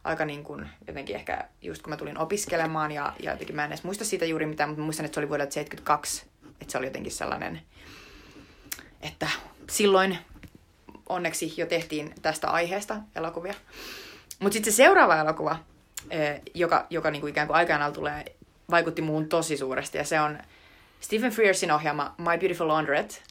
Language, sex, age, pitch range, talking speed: Finnish, female, 20-39, 150-195 Hz, 165 wpm